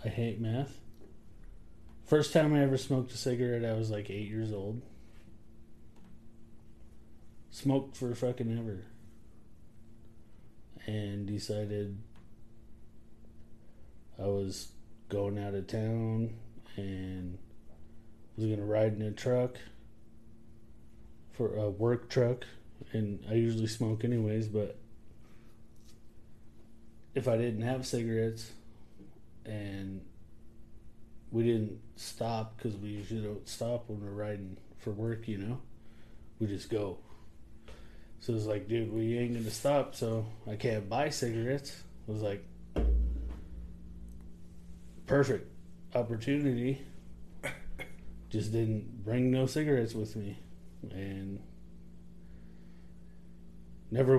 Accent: American